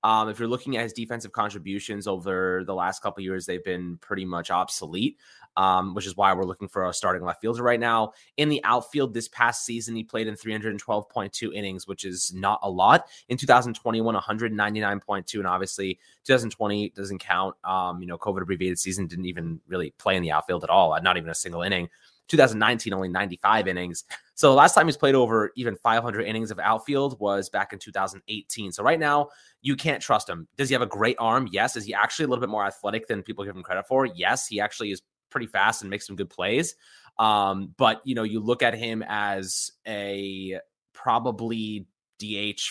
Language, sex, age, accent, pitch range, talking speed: English, male, 20-39, American, 95-115 Hz, 205 wpm